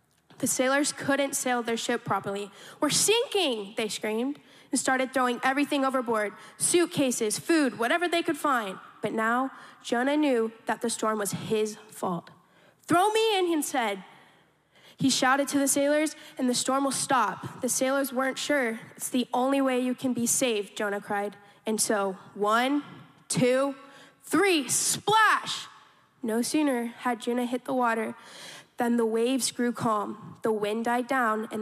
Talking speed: 160 wpm